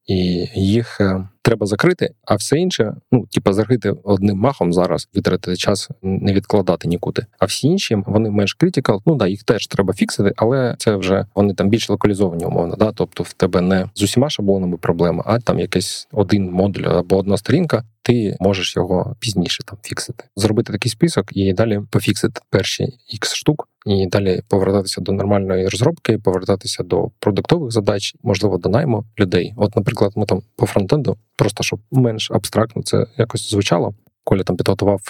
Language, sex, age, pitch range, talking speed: Ukrainian, male, 20-39, 95-115 Hz, 175 wpm